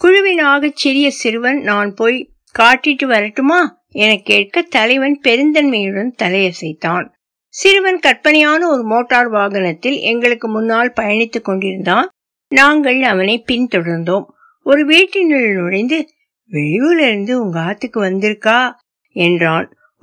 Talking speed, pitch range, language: 55 wpm, 190-270 Hz, Tamil